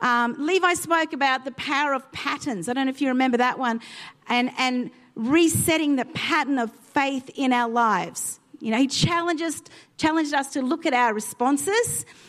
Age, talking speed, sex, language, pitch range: 40-59, 180 wpm, female, English, 240-305 Hz